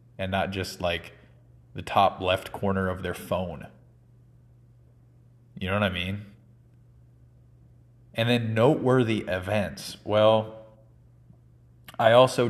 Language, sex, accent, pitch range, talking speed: English, male, American, 95-120 Hz, 110 wpm